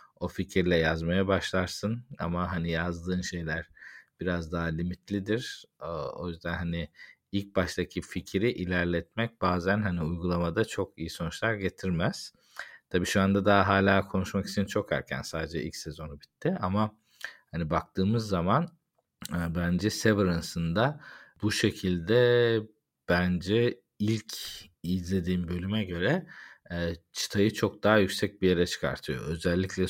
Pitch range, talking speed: 85-105 Hz, 120 wpm